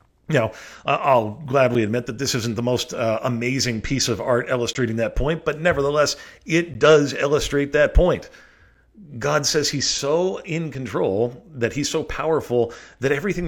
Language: English